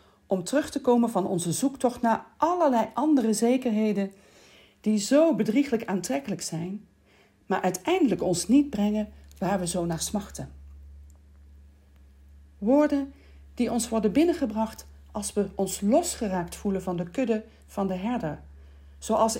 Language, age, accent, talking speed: Dutch, 40-59, Dutch, 135 wpm